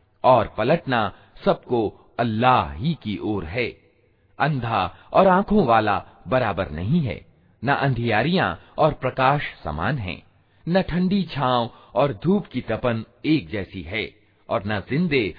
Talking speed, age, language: 135 wpm, 40-59, Hindi